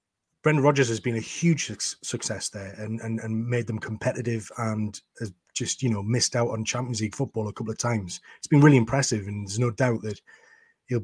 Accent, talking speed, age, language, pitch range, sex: British, 210 wpm, 30-49, English, 115-135 Hz, male